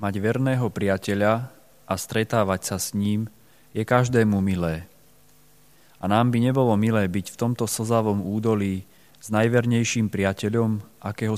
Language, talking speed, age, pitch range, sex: Slovak, 130 wpm, 30-49, 100-120 Hz, male